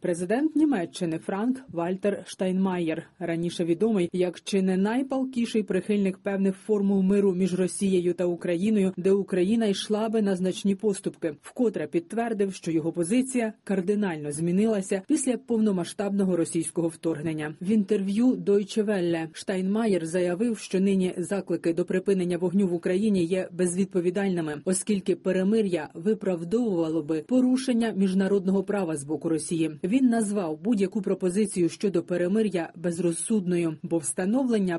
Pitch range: 175-210 Hz